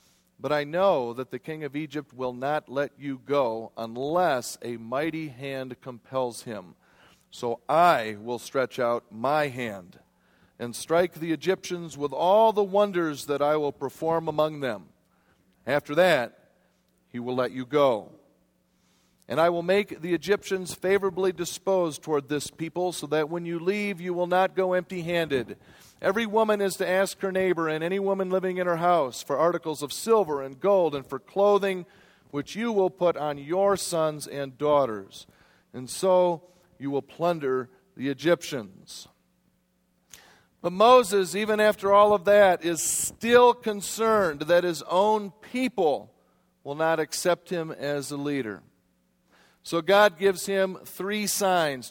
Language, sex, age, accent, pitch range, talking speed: English, male, 40-59, American, 140-190 Hz, 155 wpm